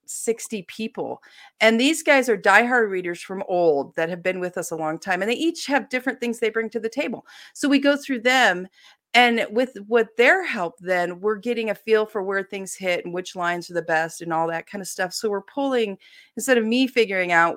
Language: English